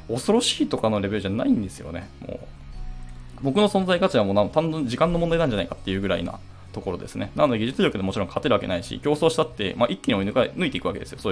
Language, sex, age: Japanese, male, 20-39